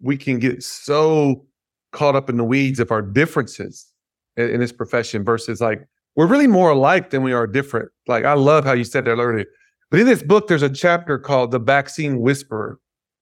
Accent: American